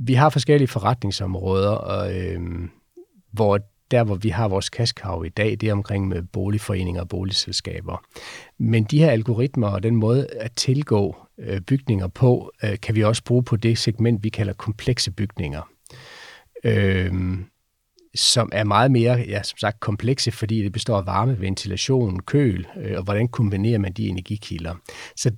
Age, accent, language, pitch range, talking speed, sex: 40-59, native, Danish, 95-120 Hz, 165 wpm, male